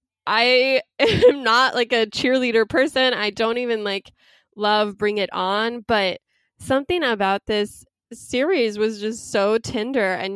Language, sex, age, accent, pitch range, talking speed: English, female, 20-39, American, 180-220 Hz, 145 wpm